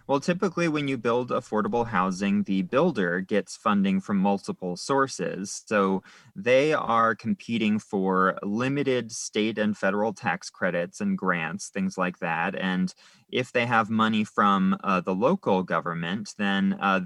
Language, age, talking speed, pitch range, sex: English, 30-49, 150 wpm, 95-120 Hz, male